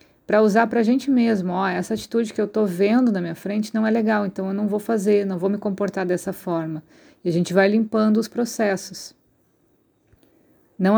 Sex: female